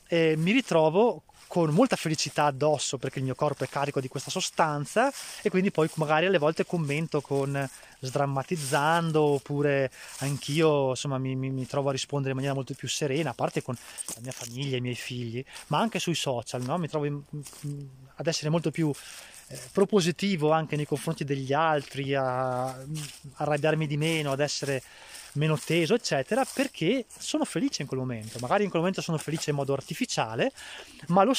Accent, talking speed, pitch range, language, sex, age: native, 180 wpm, 135-175 Hz, Italian, male, 20-39